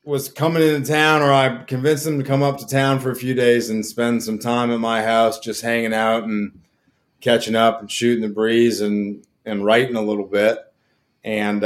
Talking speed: 210 wpm